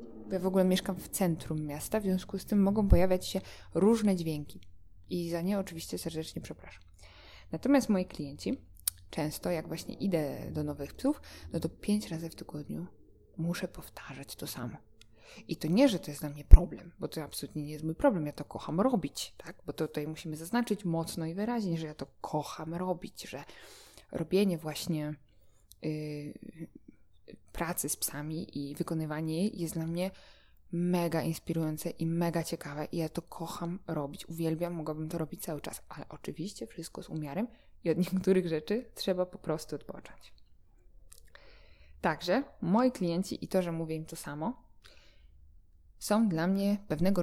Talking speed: 165 wpm